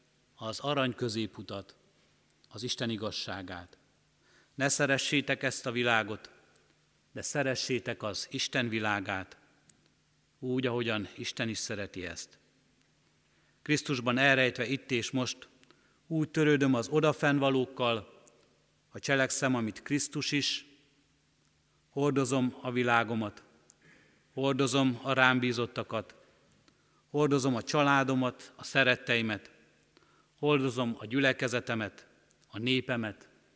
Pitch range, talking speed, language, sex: 110-135 Hz, 95 wpm, Hungarian, male